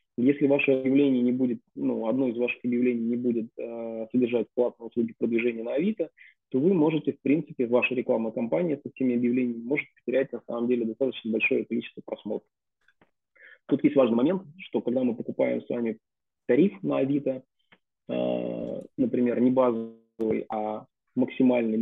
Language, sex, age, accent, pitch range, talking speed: Russian, male, 20-39, native, 120-140 Hz, 160 wpm